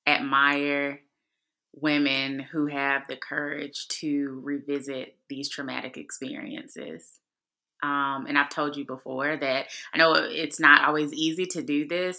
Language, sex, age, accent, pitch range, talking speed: English, female, 20-39, American, 130-150 Hz, 135 wpm